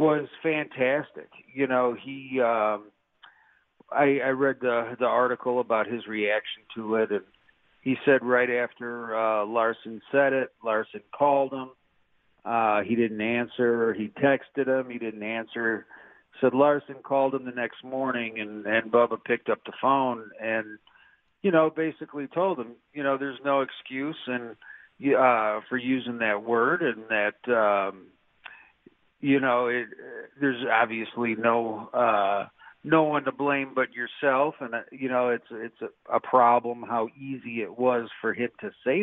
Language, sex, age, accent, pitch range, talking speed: English, male, 50-69, American, 115-140 Hz, 160 wpm